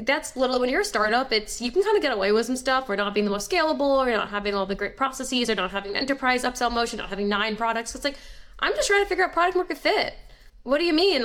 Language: English